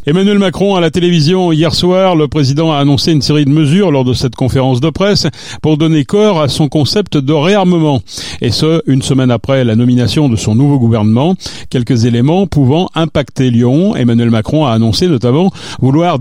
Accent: French